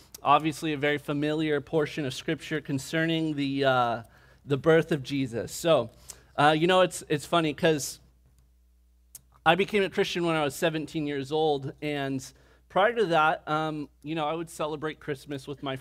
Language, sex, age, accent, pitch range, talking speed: English, male, 30-49, American, 135-160 Hz, 170 wpm